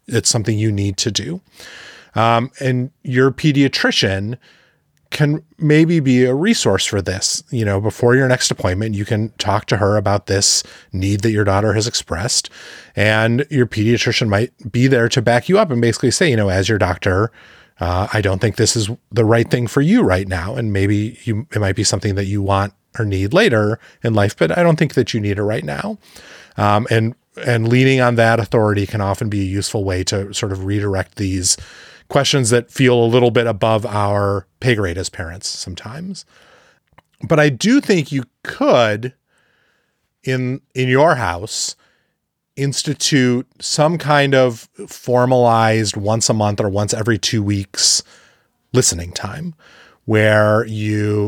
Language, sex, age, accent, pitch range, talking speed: English, male, 30-49, American, 105-130 Hz, 175 wpm